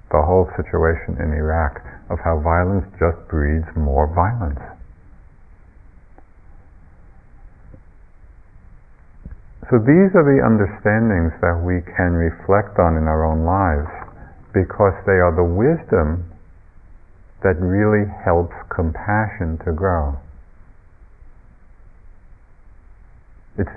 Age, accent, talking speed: 50-69, American, 95 wpm